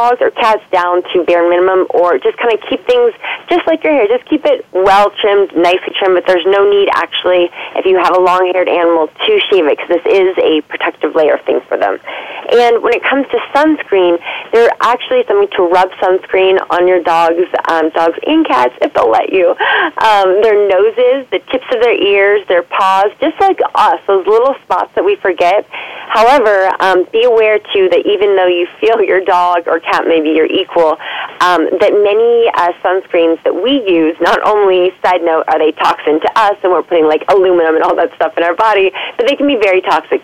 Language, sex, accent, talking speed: English, female, American, 205 wpm